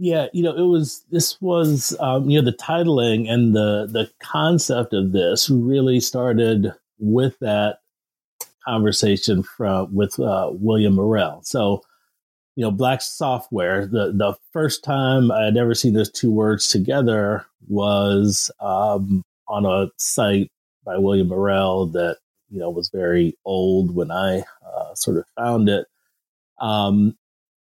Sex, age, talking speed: male, 30-49, 145 wpm